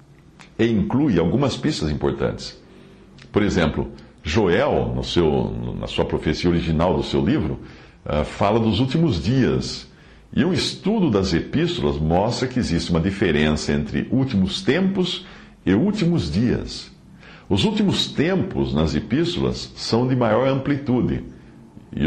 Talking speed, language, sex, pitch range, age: 120 wpm, English, male, 80-120 Hz, 60-79